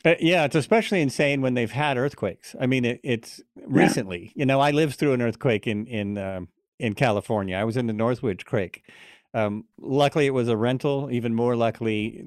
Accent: American